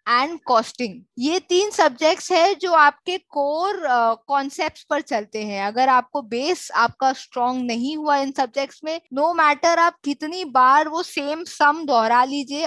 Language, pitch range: Hindi, 245-315 Hz